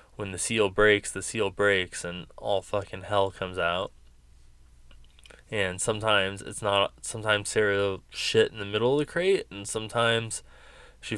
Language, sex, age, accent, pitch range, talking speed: English, male, 20-39, American, 90-110 Hz, 160 wpm